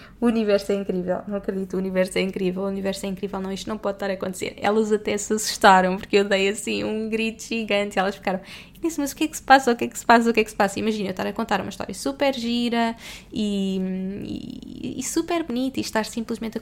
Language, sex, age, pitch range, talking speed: Portuguese, female, 20-39, 200-245 Hz, 265 wpm